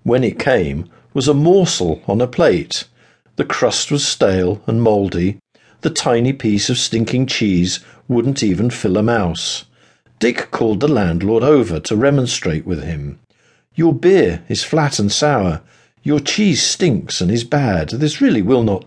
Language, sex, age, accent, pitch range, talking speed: English, male, 50-69, British, 100-145 Hz, 160 wpm